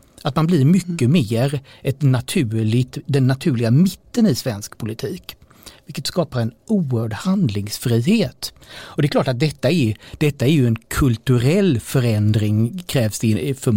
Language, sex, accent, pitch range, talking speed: Swedish, male, native, 115-155 Hz, 150 wpm